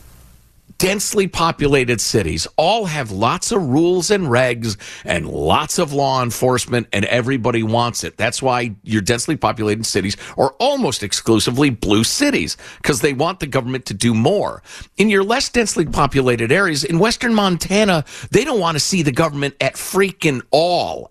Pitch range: 120-205 Hz